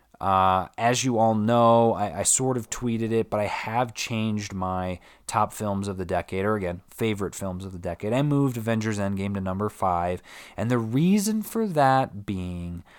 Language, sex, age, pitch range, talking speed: English, male, 20-39, 95-125 Hz, 190 wpm